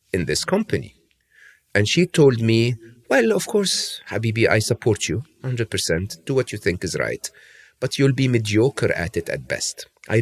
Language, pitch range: English, 95-135 Hz